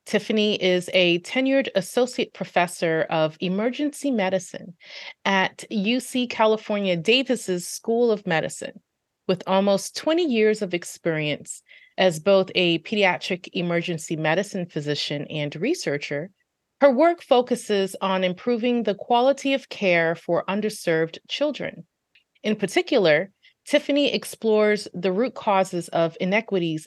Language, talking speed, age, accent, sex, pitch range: English, 115 wpm, 30-49, American, female, 175-235 Hz